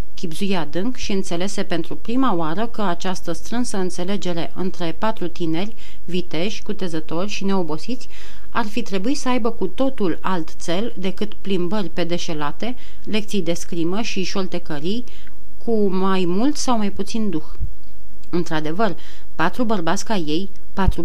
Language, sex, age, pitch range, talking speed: Romanian, female, 30-49, 170-220 Hz, 140 wpm